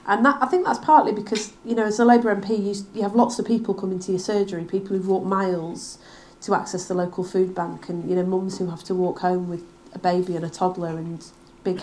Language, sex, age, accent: English, female, 40-59, British